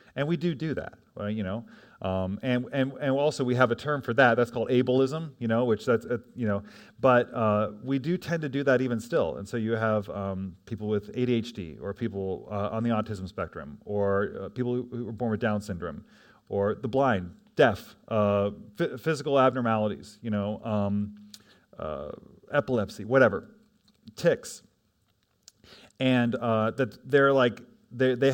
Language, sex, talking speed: English, male, 180 wpm